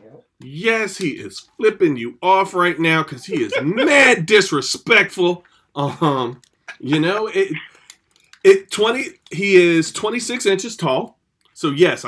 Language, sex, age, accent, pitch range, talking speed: English, male, 40-59, American, 120-195 Hz, 135 wpm